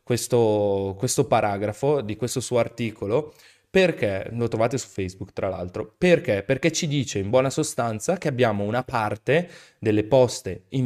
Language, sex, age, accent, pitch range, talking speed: Italian, male, 20-39, native, 105-135 Hz, 155 wpm